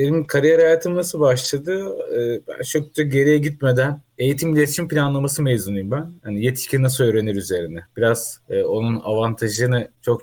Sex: male